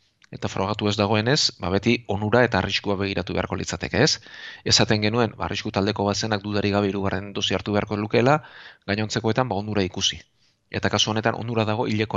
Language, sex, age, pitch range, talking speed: Spanish, male, 30-49, 100-115 Hz, 155 wpm